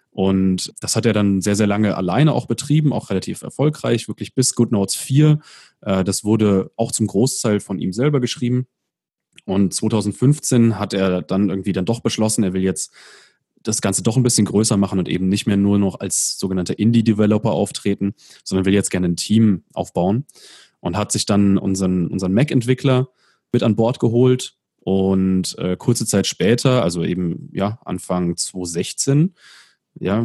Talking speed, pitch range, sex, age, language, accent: 170 wpm, 95-120 Hz, male, 30-49, German, German